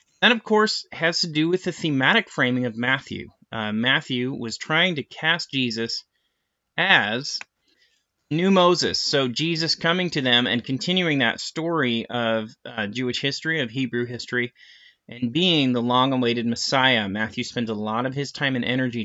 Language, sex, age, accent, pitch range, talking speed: English, male, 30-49, American, 115-145 Hz, 165 wpm